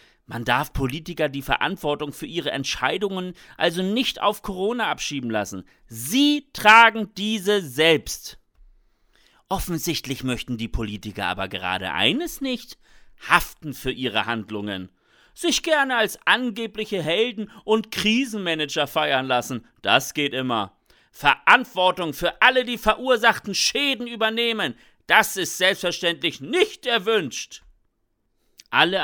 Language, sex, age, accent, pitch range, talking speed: German, male, 40-59, German, 135-215 Hz, 115 wpm